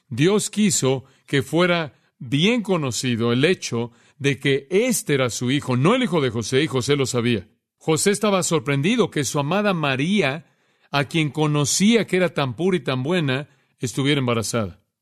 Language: Spanish